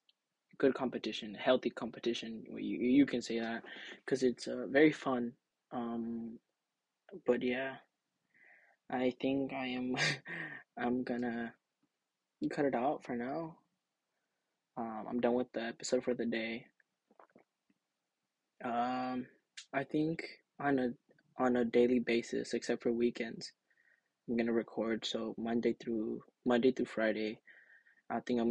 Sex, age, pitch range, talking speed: male, 20-39, 115-125 Hz, 130 wpm